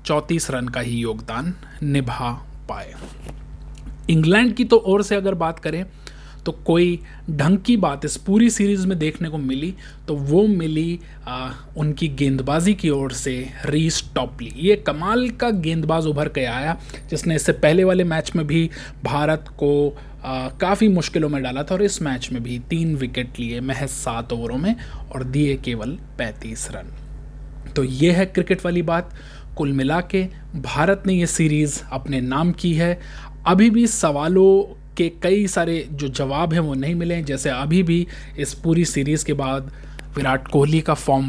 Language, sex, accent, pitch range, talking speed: Hindi, male, native, 135-175 Hz, 170 wpm